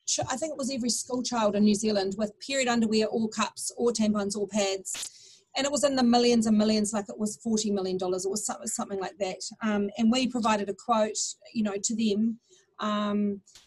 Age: 40-59